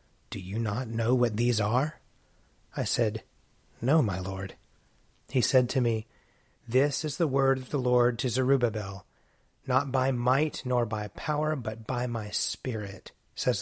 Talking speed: 160 wpm